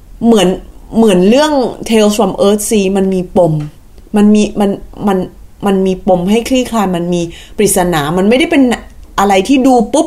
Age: 20-39